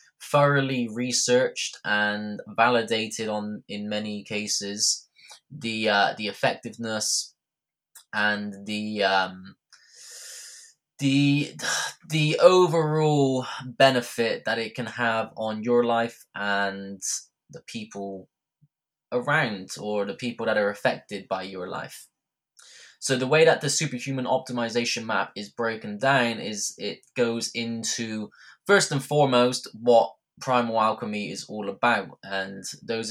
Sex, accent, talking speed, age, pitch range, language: male, British, 120 wpm, 20-39, 105-130 Hz, English